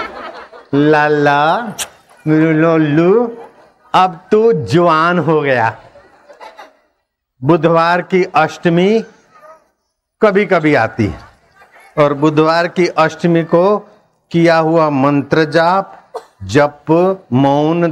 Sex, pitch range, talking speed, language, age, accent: male, 125-165 Hz, 85 wpm, Hindi, 60-79, native